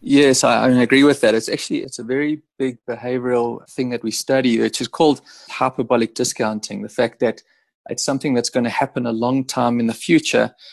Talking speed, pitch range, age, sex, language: 200 wpm, 115-135 Hz, 30-49, male, English